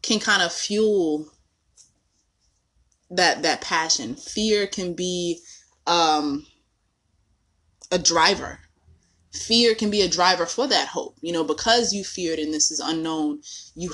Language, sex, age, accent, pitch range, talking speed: English, female, 20-39, American, 150-195 Hz, 135 wpm